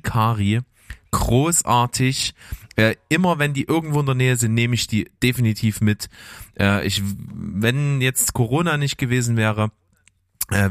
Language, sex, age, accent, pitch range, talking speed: German, male, 20-39, German, 95-115 Hz, 140 wpm